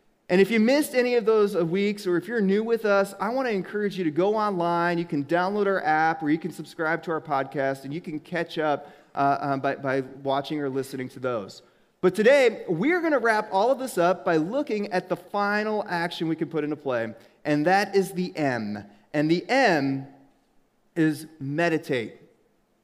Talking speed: 210 wpm